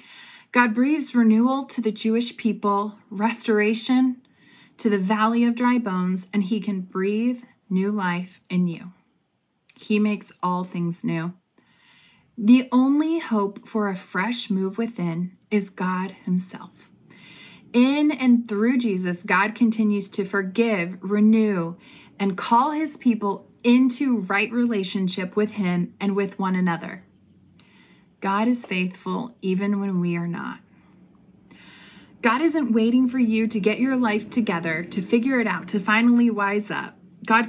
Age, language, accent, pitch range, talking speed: 20-39, English, American, 185-235 Hz, 140 wpm